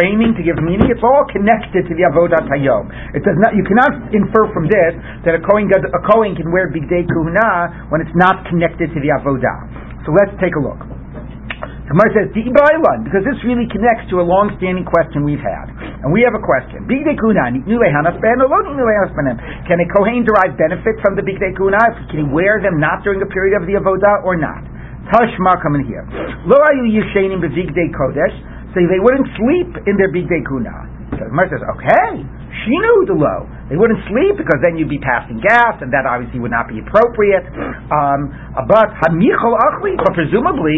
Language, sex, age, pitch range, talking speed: English, male, 50-69, 160-220 Hz, 185 wpm